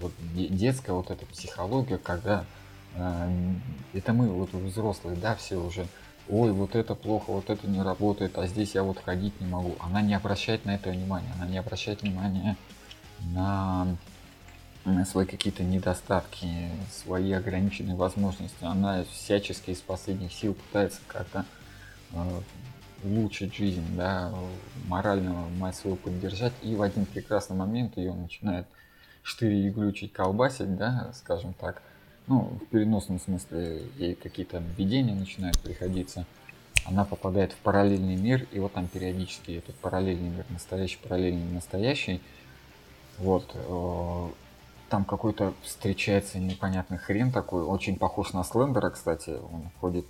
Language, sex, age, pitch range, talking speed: Russian, male, 20-39, 90-100 Hz, 135 wpm